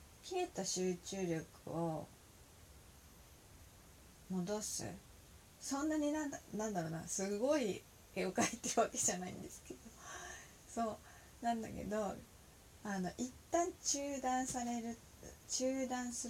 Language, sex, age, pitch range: Japanese, female, 40-59, 160-245 Hz